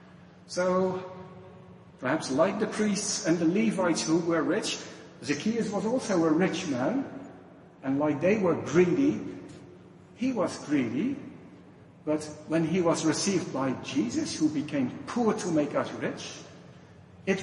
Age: 60-79